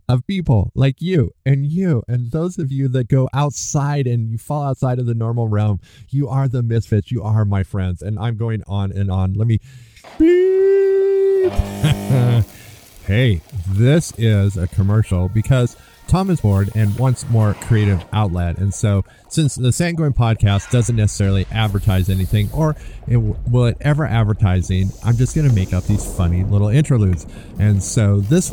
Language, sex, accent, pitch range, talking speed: English, male, American, 100-135 Hz, 170 wpm